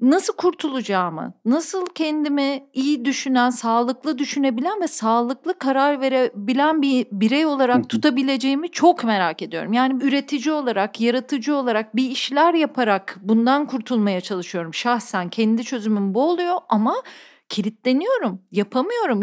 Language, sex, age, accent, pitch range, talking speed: Turkish, female, 40-59, native, 230-320 Hz, 120 wpm